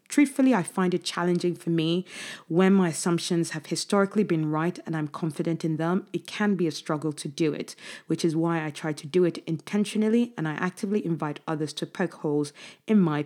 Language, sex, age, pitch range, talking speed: English, female, 20-39, 155-190 Hz, 210 wpm